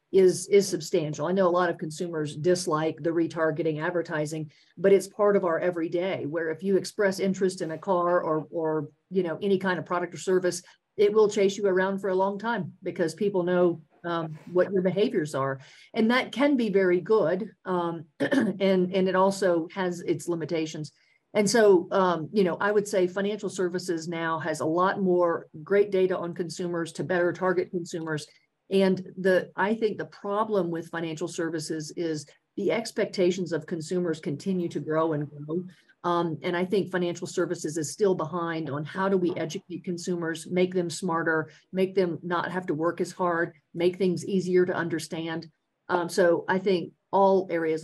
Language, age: English, 50-69